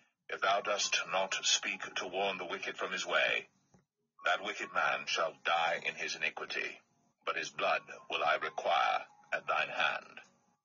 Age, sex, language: 50-69, male, English